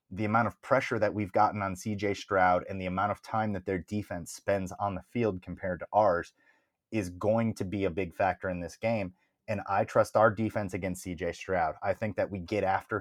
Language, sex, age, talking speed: English, male, 30-49, 225 wpm